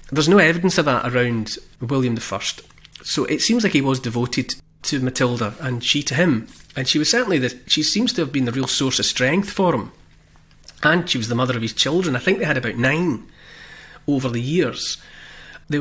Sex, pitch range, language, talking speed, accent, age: male, 125-155 Hz, English, 215 wpm, British, 30-49